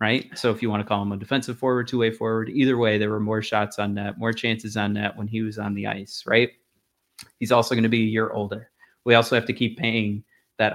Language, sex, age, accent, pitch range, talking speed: English, male, 30-49, American, 105-125 Hz, 270 wpm